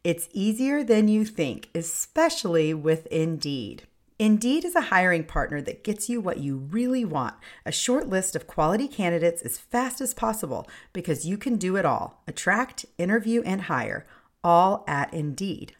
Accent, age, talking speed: American, 40-59, 165 wpm